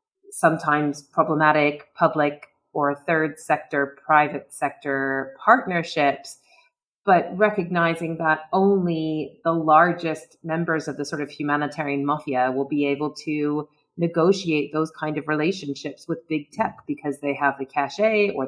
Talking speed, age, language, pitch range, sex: 130 wpm, 30-49, English, 140-160 Hz, female